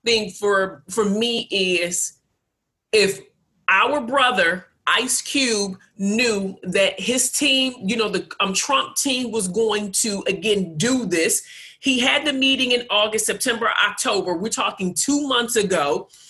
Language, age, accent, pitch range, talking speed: English, 40-59, American, 225-280 Hz, 145 wpm